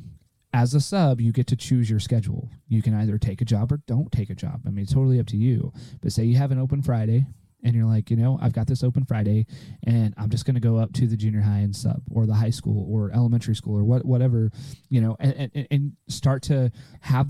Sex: male